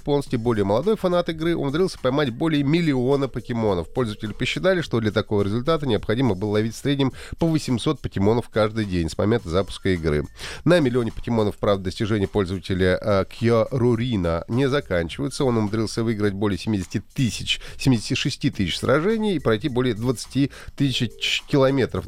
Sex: male